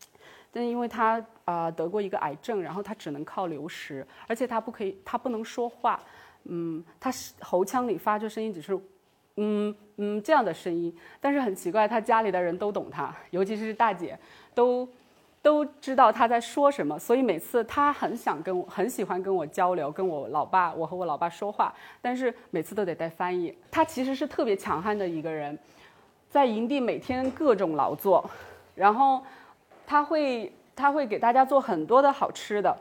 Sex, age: female, 30-49